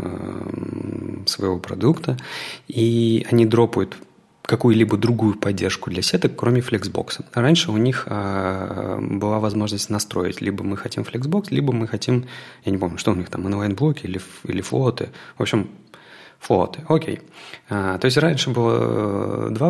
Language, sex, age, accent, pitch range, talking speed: Russian, male, 30-49, native, 100-130 Hz, 135 wpm